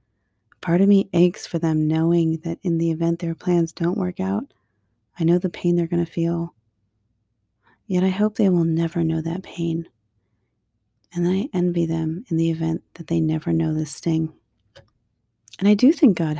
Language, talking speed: English, 185 wpm